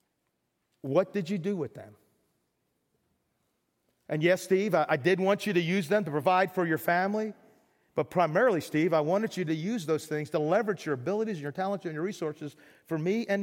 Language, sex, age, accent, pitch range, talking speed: English, male, 40-59, American, 165-240 Hz, 200 wpm